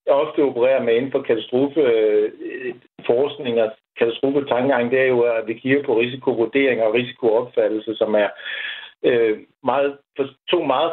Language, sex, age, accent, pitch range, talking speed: Danish, male, 60-79, native, 120-175 Hz, 145 wpm